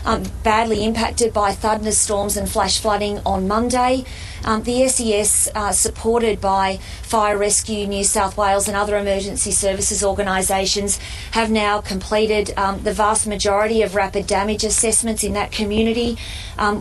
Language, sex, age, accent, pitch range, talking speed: English, female, 30-49, Australian, 195-220 Hz, 145 wpm